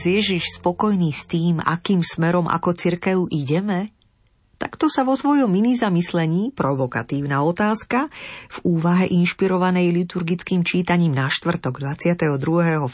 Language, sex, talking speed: Slovak, female, 115 wpm